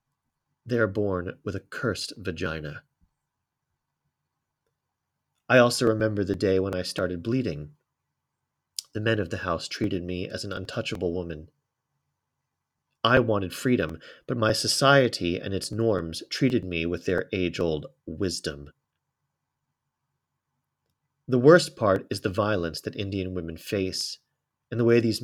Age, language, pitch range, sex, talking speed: 30-49, English, 90-125 Hz, male, 135 wpm